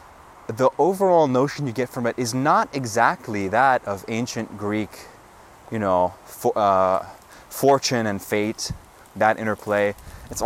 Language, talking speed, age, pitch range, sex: English, 130 wpm, 20-39, 100-120 Hz, male